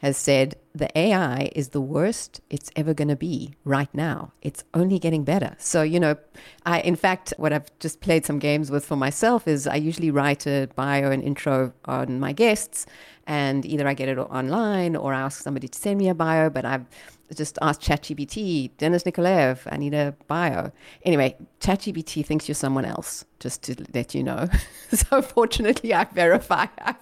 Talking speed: 190 wpm